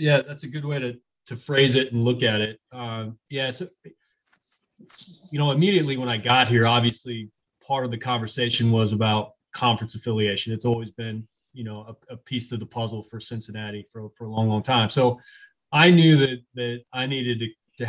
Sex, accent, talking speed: male, American, 200 wpm